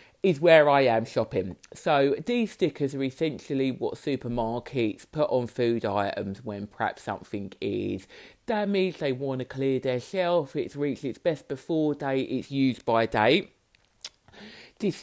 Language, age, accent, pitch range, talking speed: English, 40-59, British, 135-185 Hz, 150 wpm